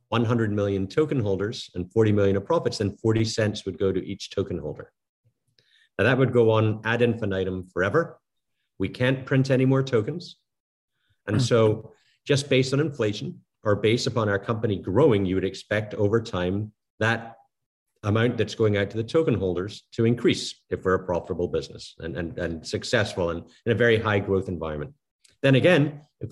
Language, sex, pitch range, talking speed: English, male, 100-125 Hz, 180 wpm